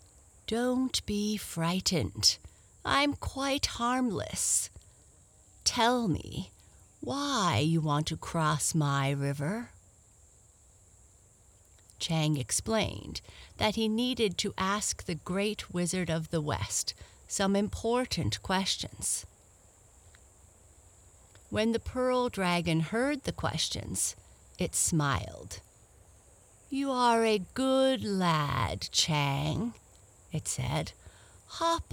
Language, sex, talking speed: English, female, 90 wpm